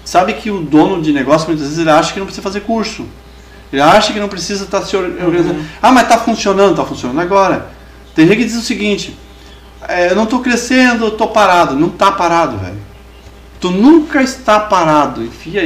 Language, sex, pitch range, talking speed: Portuguese, male, 150-230 Hz, 200 wpm